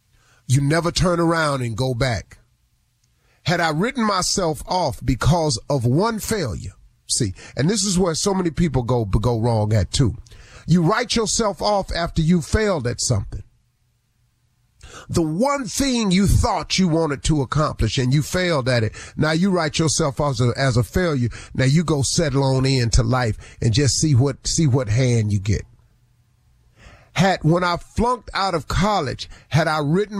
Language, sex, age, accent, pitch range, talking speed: English, male, 40-59, American, 120-175 Hz, 175 wpm